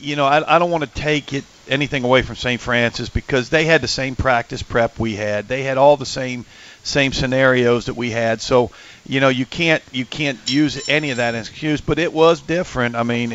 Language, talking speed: English, 230 wpm